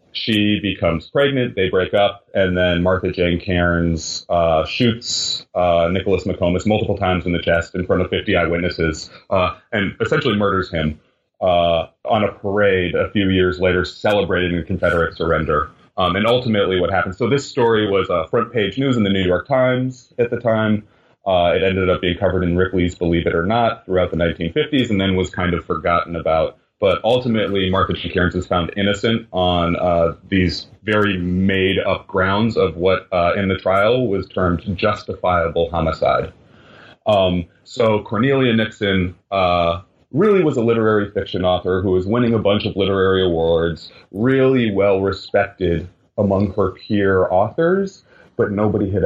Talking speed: 170 wpm